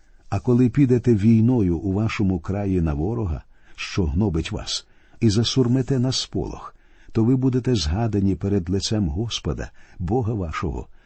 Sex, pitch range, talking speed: male, 95-125 Hz, 135 wpm